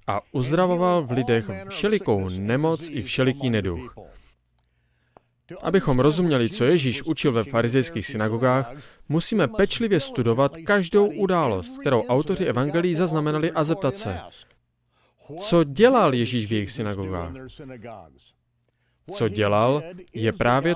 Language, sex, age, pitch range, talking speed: Slovak, male, 30-49, 115-175 Hz, 110 wpm